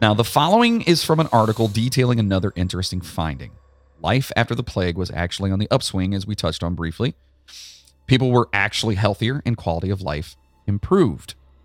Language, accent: English, American